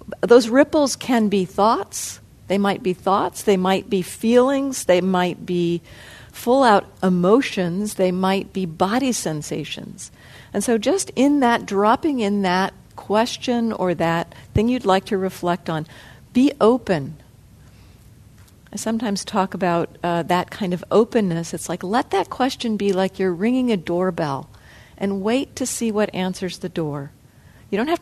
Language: English